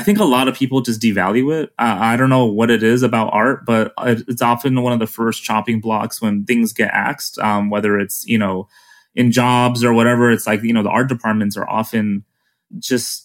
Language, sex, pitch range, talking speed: English, male, 105-130 Hz, 225 wpm